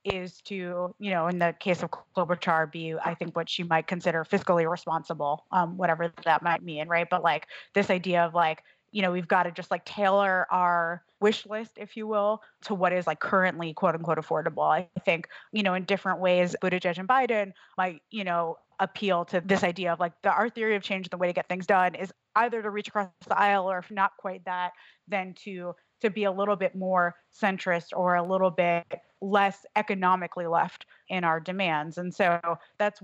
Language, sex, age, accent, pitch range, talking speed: English, female, 20-39, American, 170-200 Hz, 210 wpm